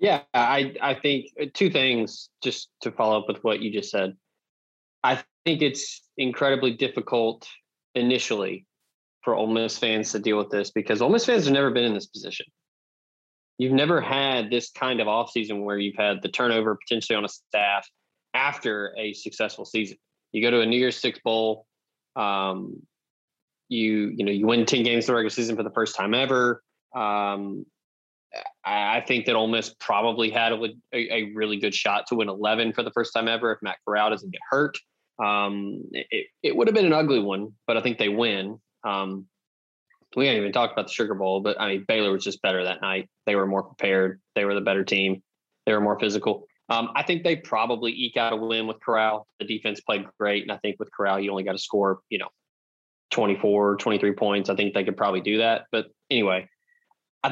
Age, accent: 20-39, American